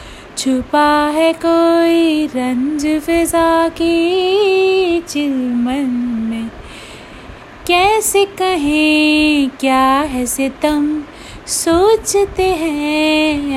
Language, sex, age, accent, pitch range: Hindi, female, 30-49, native, 270-380 Hz